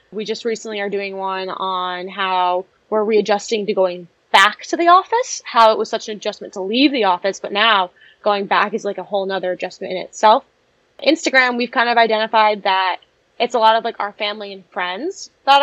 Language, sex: English, female